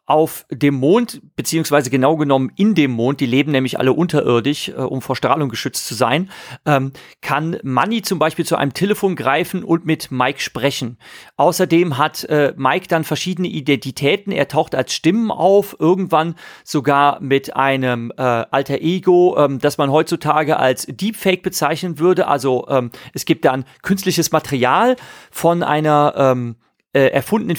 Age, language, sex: 40-59, German, male